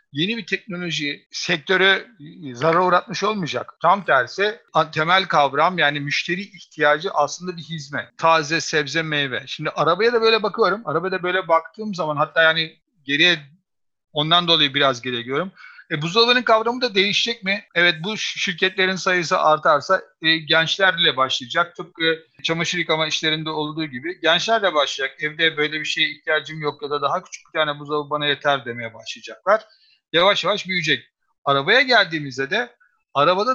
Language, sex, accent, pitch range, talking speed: Turkish, male, native, 145-185 Hz, 150 wpm